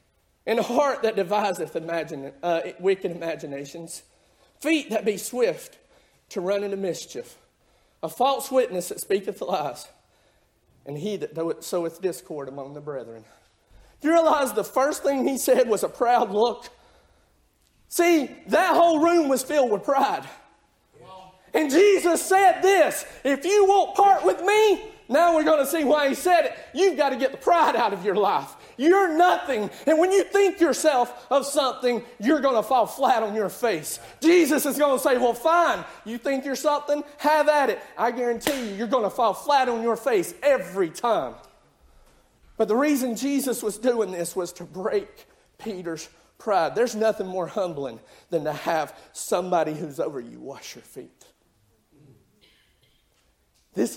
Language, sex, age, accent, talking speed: English, male, 40-59, American, 165 wpm